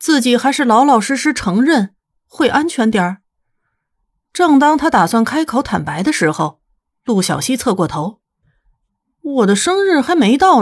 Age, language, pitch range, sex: 30-49, Chinese, 210-290 Hz, female